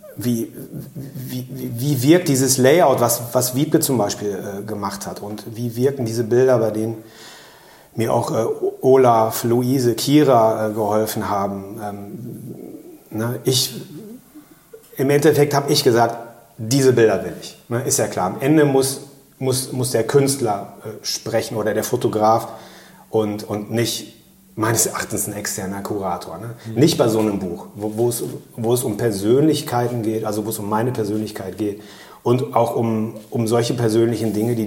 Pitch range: 110-140 Hz